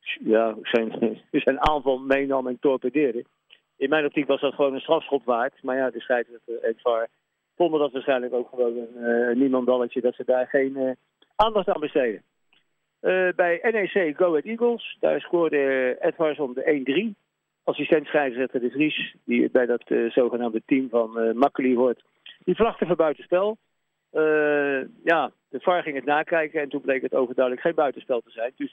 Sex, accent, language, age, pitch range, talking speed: male, Dutch, Dutch, 50-69, 125-155 Hz, 180 wpm